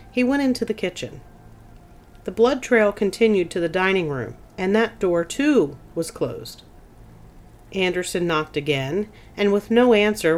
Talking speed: 150 wpm